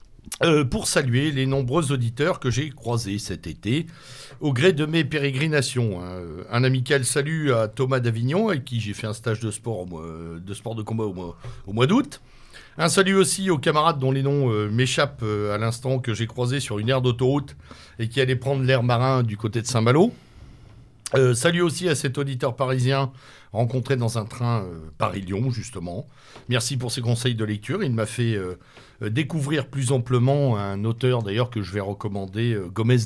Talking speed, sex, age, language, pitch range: 190 wpm, male, 60-79, French, 105-135 Hz